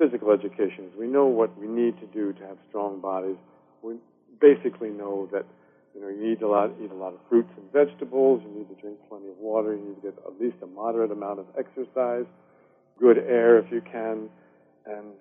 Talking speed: 215 wpm